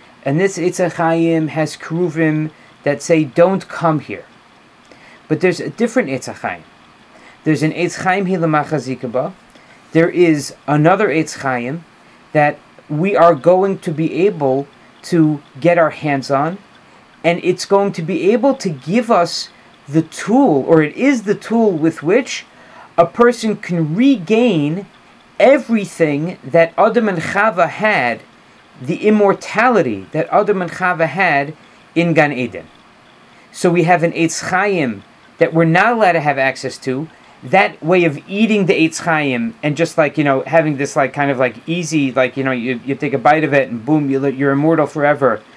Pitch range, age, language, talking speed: 145-185 Hz, 40-59, English, 160 wpm